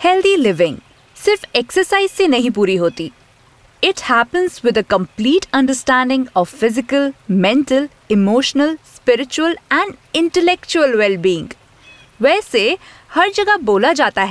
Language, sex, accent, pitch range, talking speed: Hindi, female, native, 205-325 Hz, 95 wpm